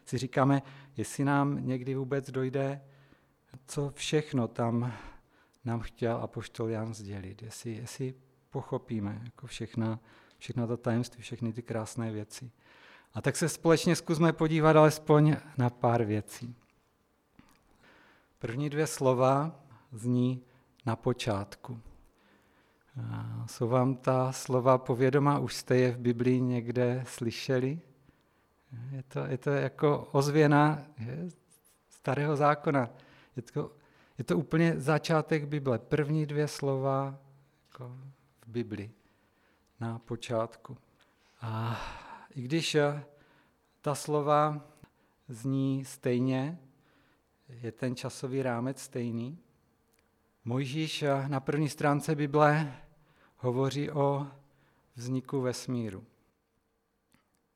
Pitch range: 120-145 Hz